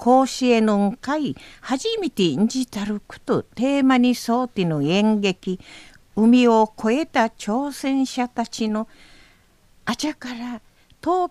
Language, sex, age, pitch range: Japanese, female, 50-69, 230-305 Hz